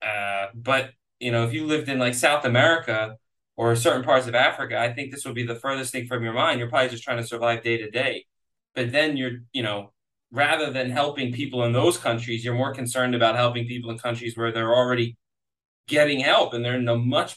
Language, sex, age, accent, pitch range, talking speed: English, male, 20-39, American, 115-145 Hz, 230 wpm